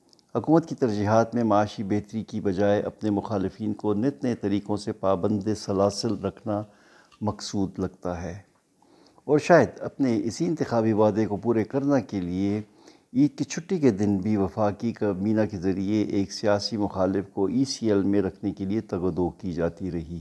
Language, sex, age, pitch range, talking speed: Urdu, male, 60-79, 95-115 Hz, 165 wpm